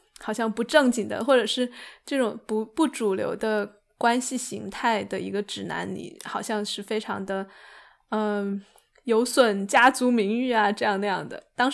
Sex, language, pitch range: female, Chinese, 210-305 Hz